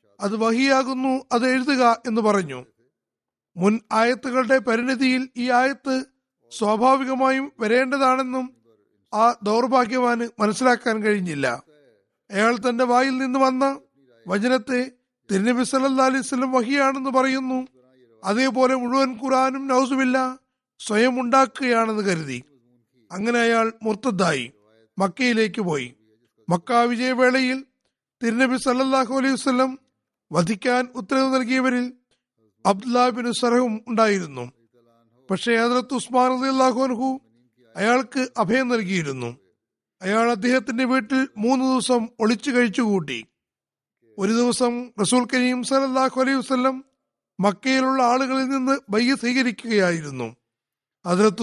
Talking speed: 80 wpm